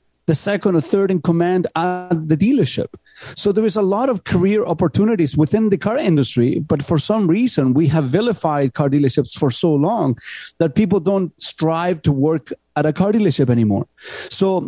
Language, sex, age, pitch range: English, male, 50-69, 145-195 Hz